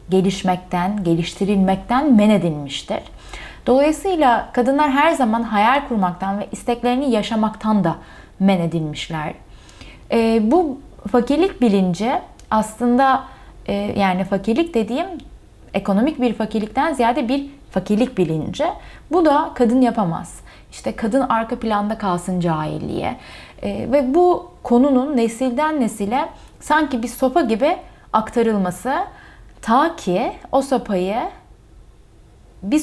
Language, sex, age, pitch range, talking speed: Turkish, female, 30-49, 190-260 Hz, 105 wpm